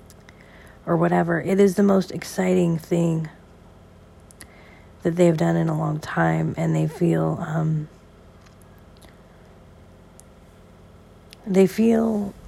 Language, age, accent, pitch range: English, 40-59, American, 150-185 Hz